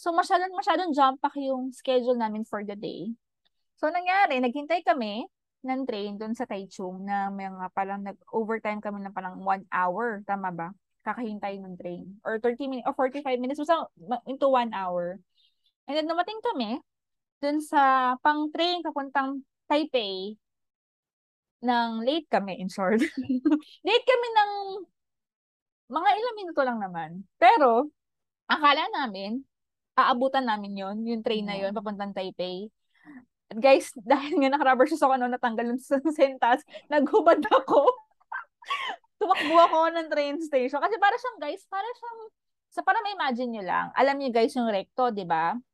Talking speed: 150 wpm